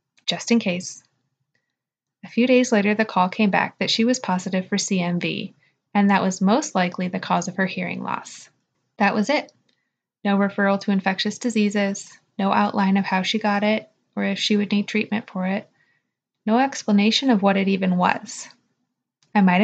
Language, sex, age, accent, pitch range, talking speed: English, female, 20-39, American, 185-225 Hz, 185 wpm